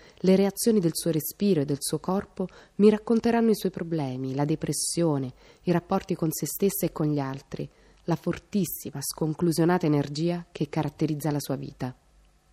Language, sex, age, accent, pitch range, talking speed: Italian, female, 30-49, native, 145-185 Hz, 165 wpm